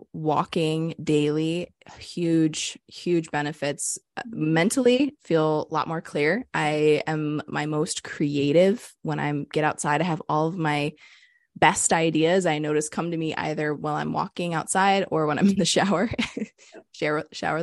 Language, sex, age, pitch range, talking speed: English, female, 20-39, 155-185 Hz, 155 wpm